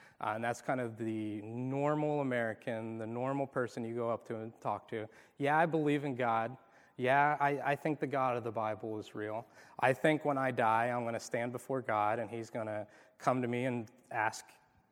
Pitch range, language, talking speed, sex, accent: 115-140 Hz, English, 215 wpm, male, American